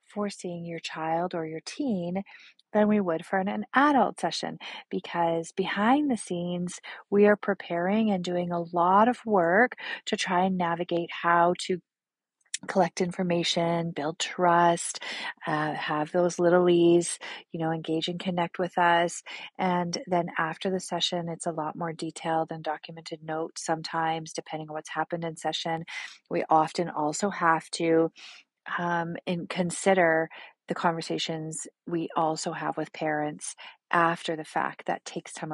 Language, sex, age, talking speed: English, female, 30-49, 155 wpm